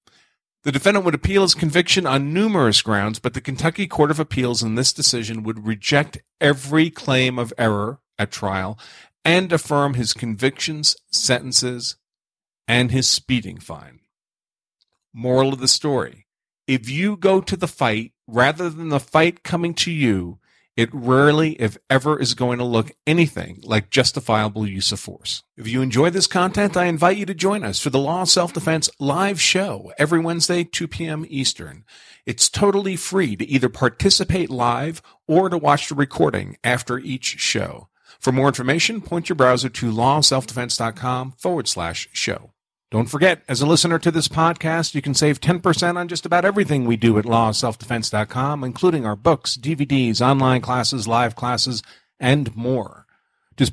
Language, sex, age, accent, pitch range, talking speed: English, male, 40-59, American, 120-160 Hz, 165 wpm